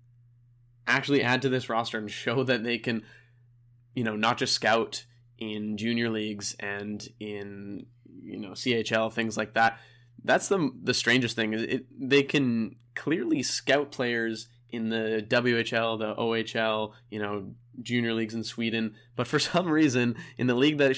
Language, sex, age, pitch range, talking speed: English, male, 20-39, 110-125 Hz, 165 wpm